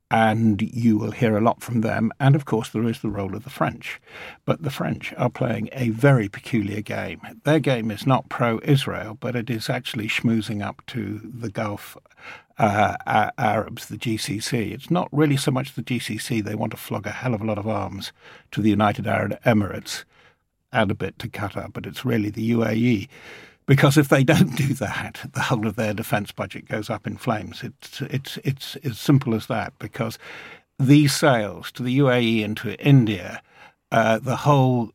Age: 50-69